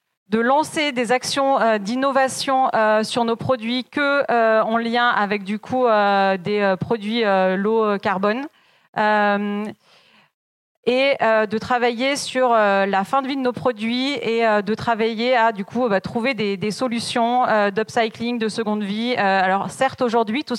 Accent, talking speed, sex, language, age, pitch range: French, 135 wpm, female, French, 30-49, 220-250 Hz